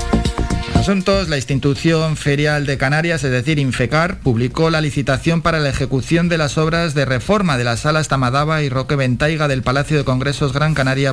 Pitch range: 120-150 Hz